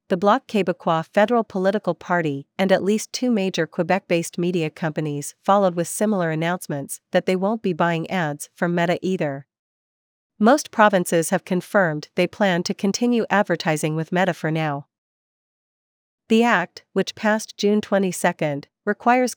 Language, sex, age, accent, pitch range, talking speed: English, female, 40-59, American, 165-200 Hz, 145 wpm